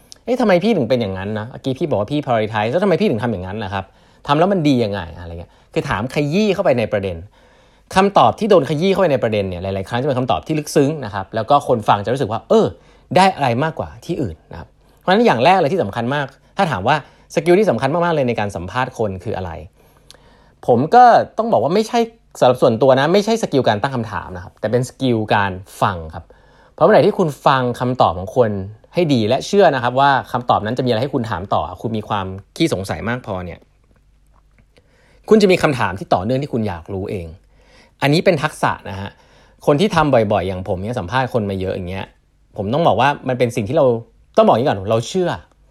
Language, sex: Thai, male